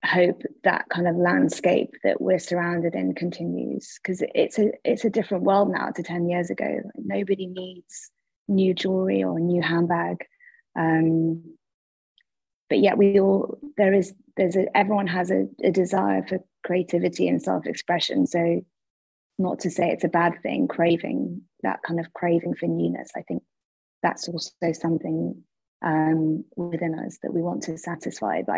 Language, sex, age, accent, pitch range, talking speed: English, female, 20-39, British, 160-185 Hz, 160 wpm